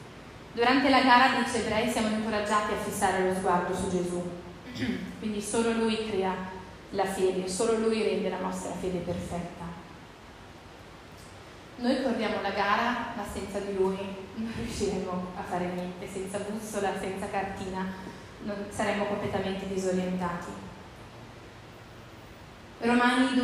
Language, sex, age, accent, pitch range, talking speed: Italian, female, 30-49, native, 190-225 Hz, 125 wpm